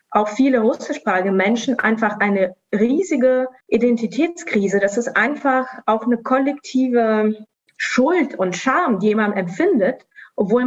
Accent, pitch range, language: German, 200-245 Hz, German